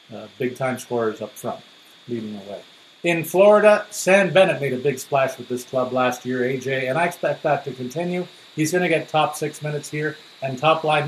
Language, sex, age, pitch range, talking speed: English, male, 50-69, 130-160 Hz, 210 wpm